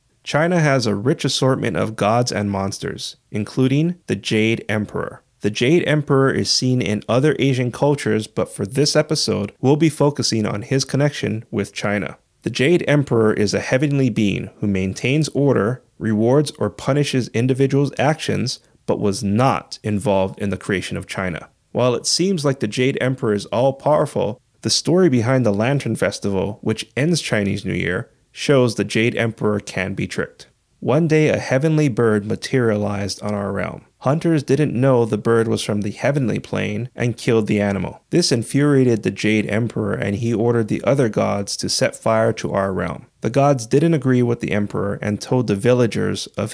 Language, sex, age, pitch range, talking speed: English, male, 30-49, 105-140 Hz, 175 wpm